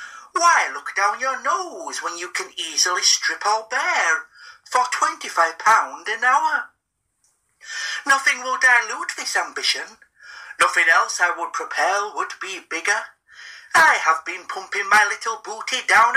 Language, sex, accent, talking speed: English, male, British, 135 wpm